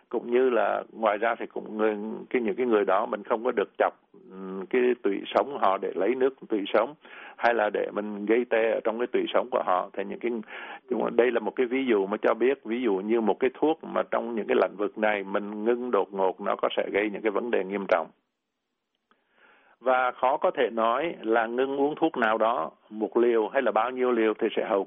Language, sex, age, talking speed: Vietnamese, male, 60-79, 240 wpm